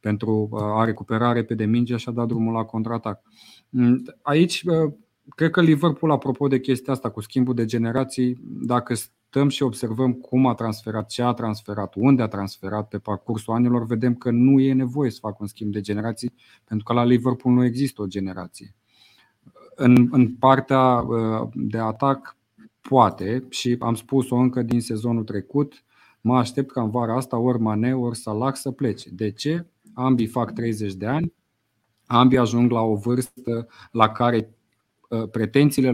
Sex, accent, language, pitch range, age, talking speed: male, native, Romanian, 110-130 Hz, 30-49, 165 wpm